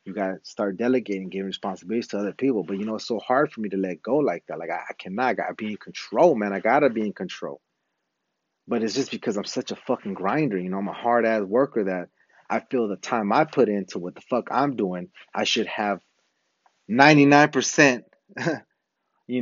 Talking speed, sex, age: 225 wpm, male, 30-49